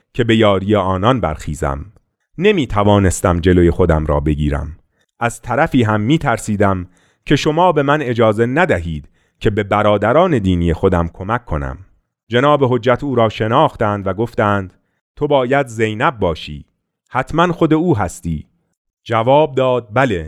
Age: 40-59